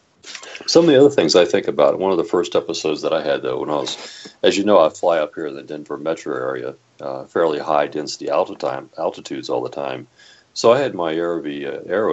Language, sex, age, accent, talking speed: English, male, 40-59, American, 230 wpm